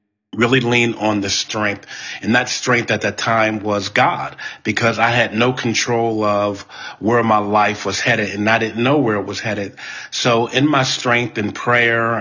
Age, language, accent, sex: 40-59, English, American, male